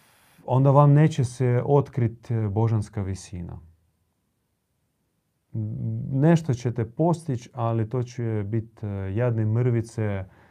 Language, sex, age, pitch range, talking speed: Croatian, male, 30-49, 105-125 Hz, 85 wpm